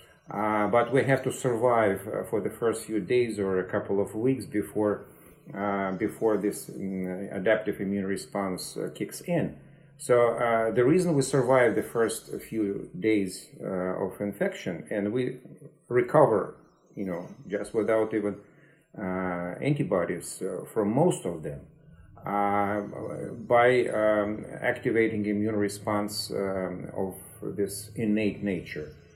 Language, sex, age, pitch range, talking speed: English, male, 40-59, 100-130 Hz, 140 wpm